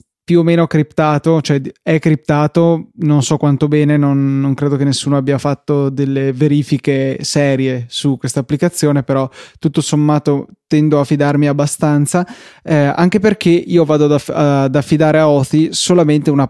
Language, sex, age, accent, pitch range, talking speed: Italian, male, 20-39, native, 140-155 Hz, 160 wpm